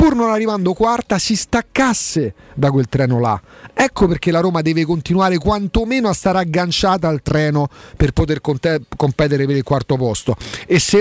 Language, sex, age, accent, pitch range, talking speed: Italian, male, 40-59, native, 145-205 Hz, 170 wpm